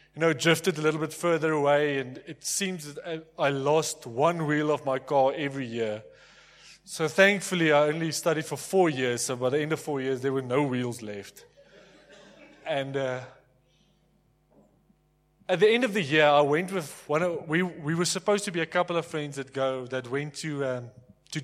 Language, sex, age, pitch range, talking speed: English, male, 20-39, 135-175 Hz, 200 wpm